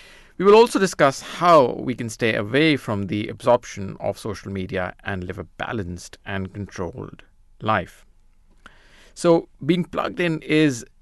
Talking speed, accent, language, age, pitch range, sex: 145 wpm, Indian, English, 50-69, 105-130 Hz, male